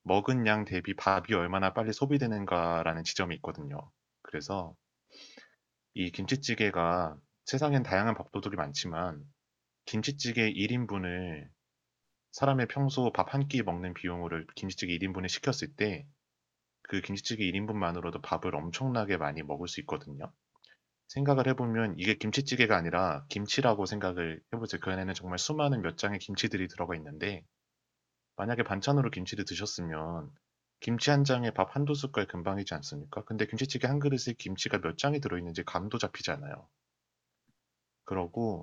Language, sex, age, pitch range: Korean, male, 30-49, 85-115 Hz